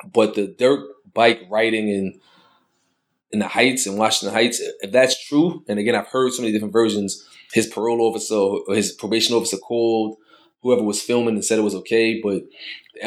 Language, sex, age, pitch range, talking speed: English, male, 20-39, 105-125 Hz, 190 wpm